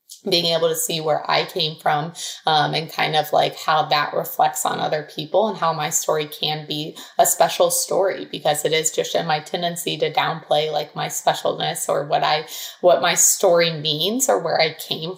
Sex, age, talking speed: female, 20-39, 200 wpm